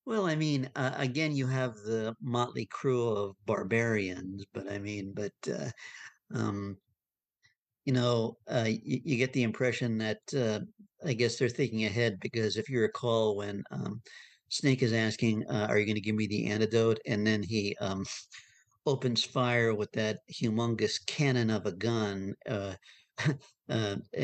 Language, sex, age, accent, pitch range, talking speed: English, male, 50-69, American, 105-125 Hz, 160 wpm